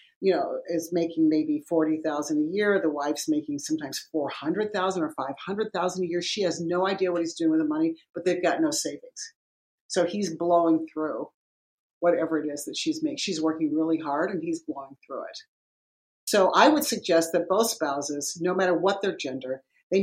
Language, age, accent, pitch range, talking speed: English, 50-69, American, 160-255 Hz, 190 wpm